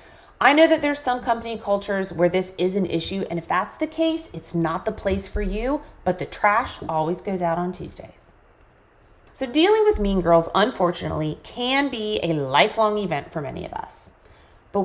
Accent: American